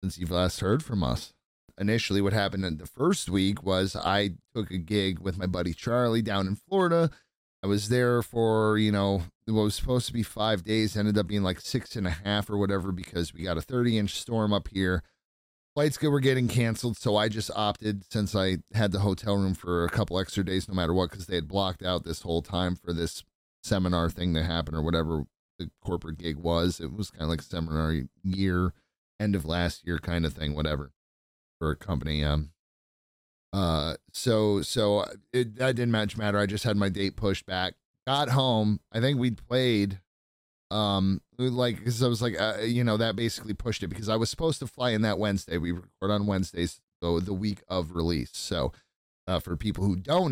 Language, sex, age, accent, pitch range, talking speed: English, male, 30-49, American, 85-105 Hz, 210 wpm